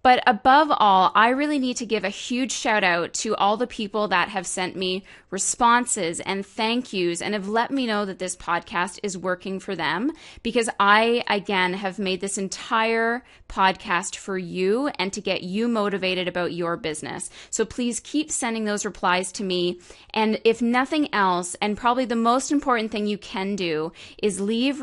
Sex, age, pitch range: female, 20-39, 185-235 Hz